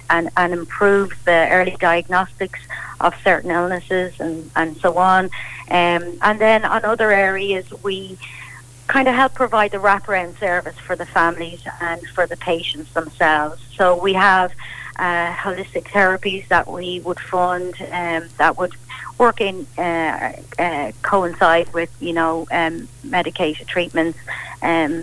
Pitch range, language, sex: 165-195 Hz, English, female